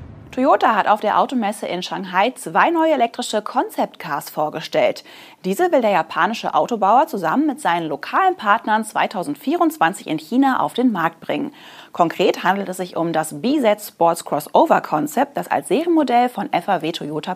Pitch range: 180-290 Hz